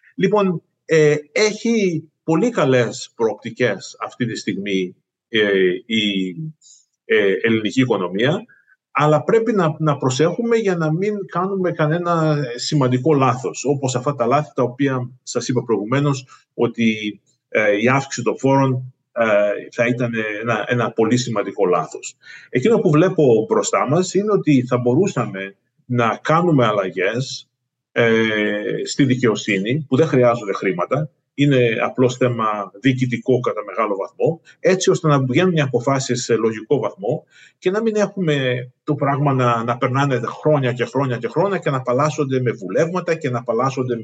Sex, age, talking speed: male, 30-49, 135 wpm